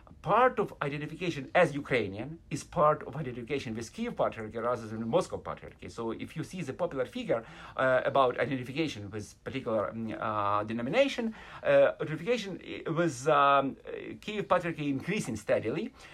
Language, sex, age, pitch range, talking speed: English, male, 50-69, 125-185 Hz, 145 wpm